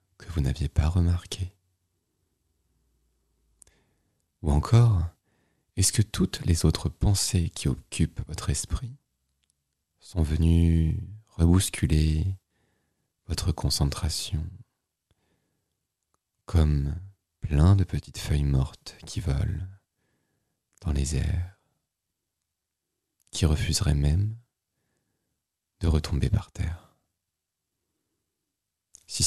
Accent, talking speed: French, 85 wpm